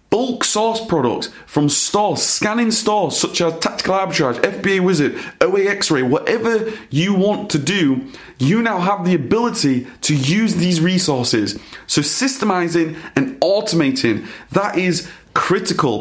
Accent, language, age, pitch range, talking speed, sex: British, English, 30-49, 140-205 Hz, 135 wpm, male